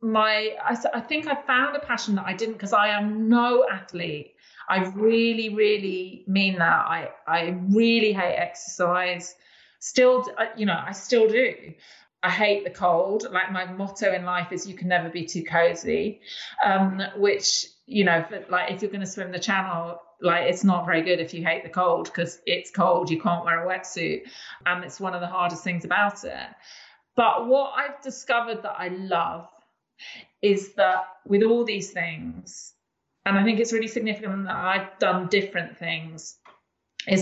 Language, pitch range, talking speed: English, 180-215 Hz, 180 wpm